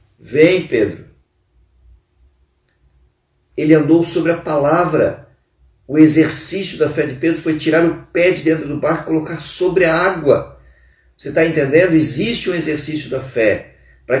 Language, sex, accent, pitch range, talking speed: Portuguese, male, Brazilian, 100-160 Hz, 150 wpm